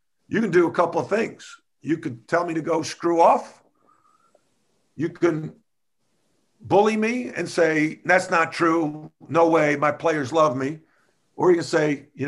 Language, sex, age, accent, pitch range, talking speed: English, male, 50-69, American, 135-170 Hz, 170 wpm